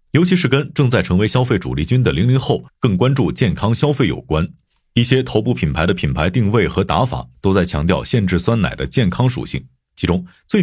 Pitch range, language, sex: 85-130 Hz, Chinese, male